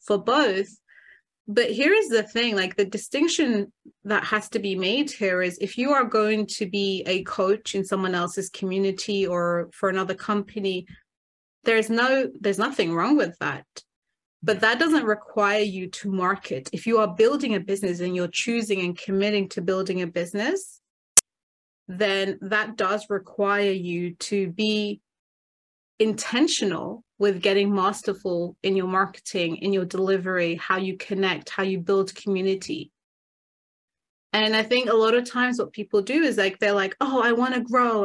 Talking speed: 165 wpm